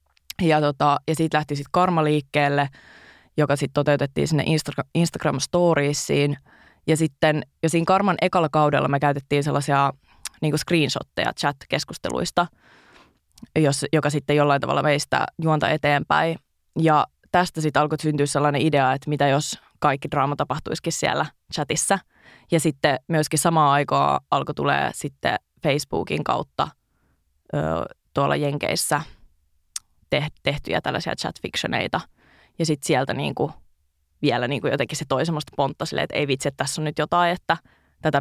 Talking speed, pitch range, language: 135 wpm, 140-155 Hz, Finnish